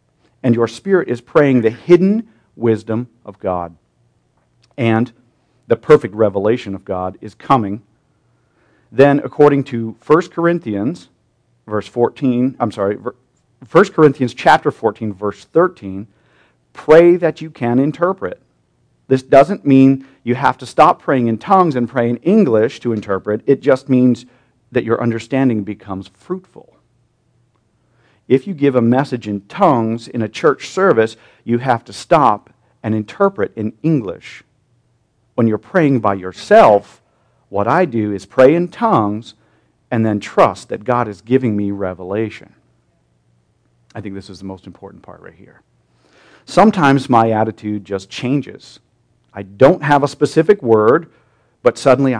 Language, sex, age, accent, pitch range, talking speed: English, male, 40-59, American, 105-135 Hz, 145 wpm